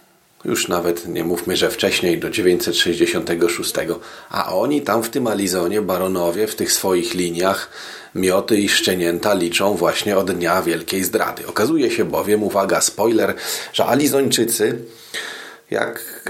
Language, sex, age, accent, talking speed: Polish, male, 40-59, native, 135 wpm